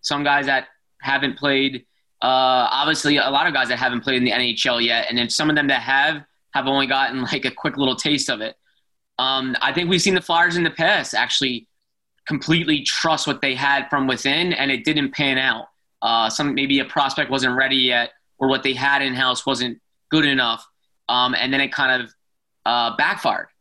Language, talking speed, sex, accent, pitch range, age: English, 205 wpm, male, American, 130-150 Hz, 20-39